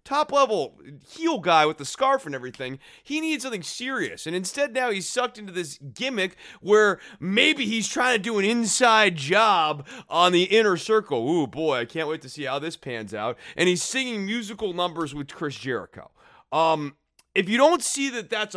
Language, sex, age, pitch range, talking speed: English, male, 30-49, 155-230 Hz, 195 wpm